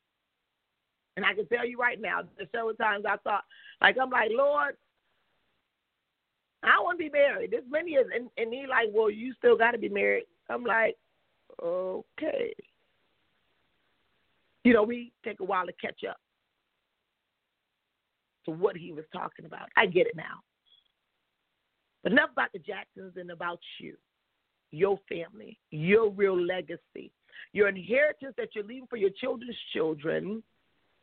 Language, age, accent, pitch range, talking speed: English, 40-59, American, 210-290 Hz, 155 wpm